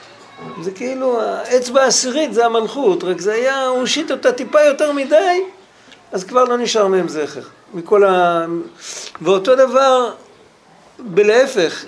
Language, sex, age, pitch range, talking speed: Hebrew, male, 50-69, 175-235 Hz, 130 wpm